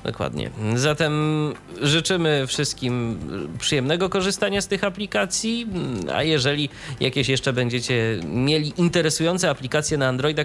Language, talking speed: Polish, 110 wpm